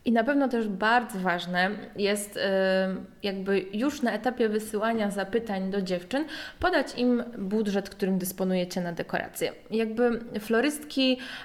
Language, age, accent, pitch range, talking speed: Polish, 20-39, native, 195-235 Hz, 125 wpm